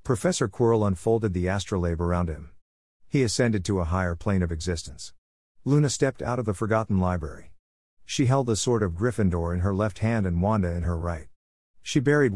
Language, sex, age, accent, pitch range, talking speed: English, male, 50-69, American, 85-115 Hz, 190 wpm